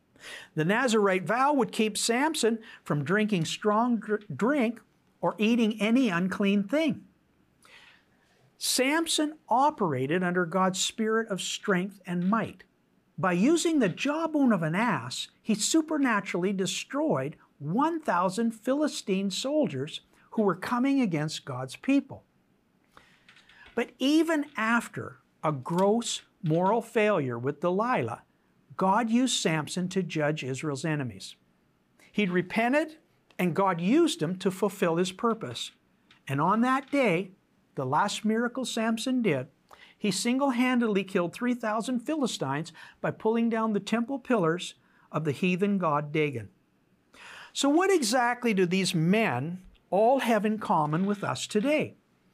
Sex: male